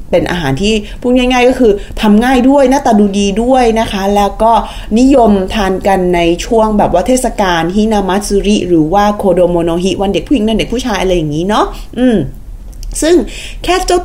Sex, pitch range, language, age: female, 175-230 Hz, Thai, 20-39